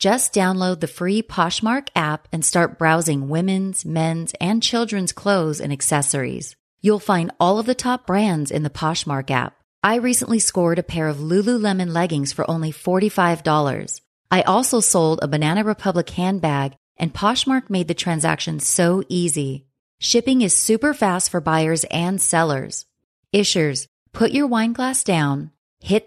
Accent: American